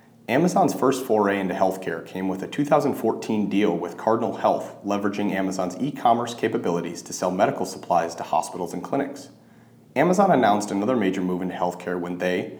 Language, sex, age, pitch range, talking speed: English, male, 30-49, 90-110 Hz, 160 wpm